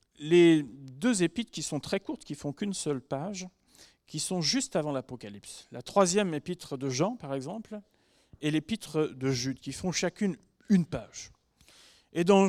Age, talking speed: 40-59, 170 wpm